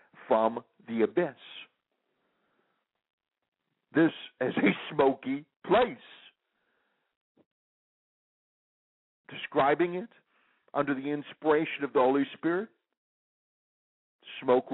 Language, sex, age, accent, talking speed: English, male, 50-69, American, 75 wpm